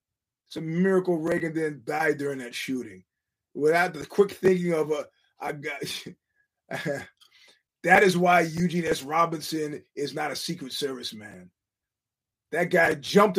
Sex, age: male, 30-49